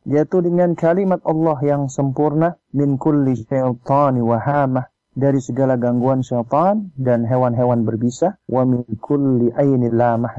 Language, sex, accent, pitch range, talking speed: Indonesian, male, native, 135-180 Hz, 110 wpm